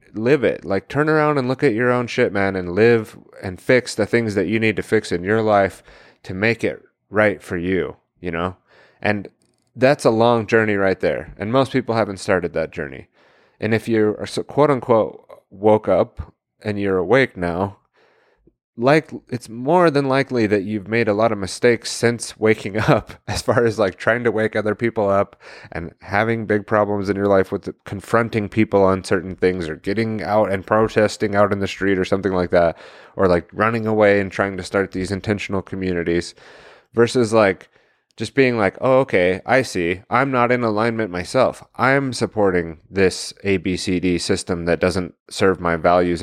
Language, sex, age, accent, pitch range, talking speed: English, male, 30-49, American, 95-115 Hz, 190 wpm